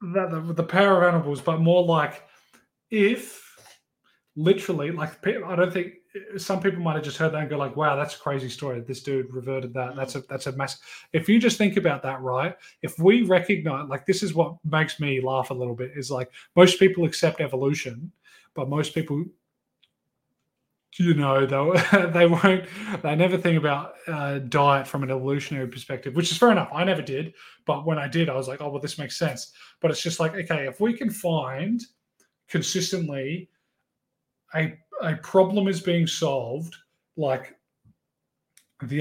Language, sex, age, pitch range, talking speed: English, male, 20-39, 140-180 Hz, 185 wpm